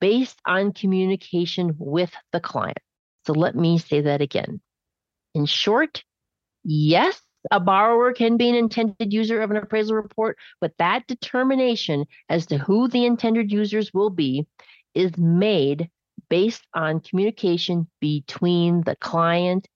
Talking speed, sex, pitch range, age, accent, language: 135 wpm, female, 160-220 Hz, 40-59, American, English